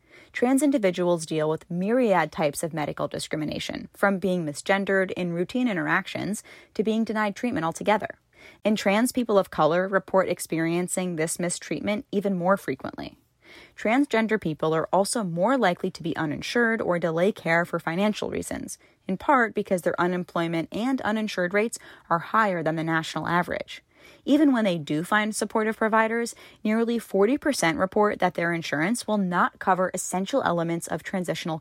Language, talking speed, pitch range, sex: English, 155 wpm, 170-215 Hz, female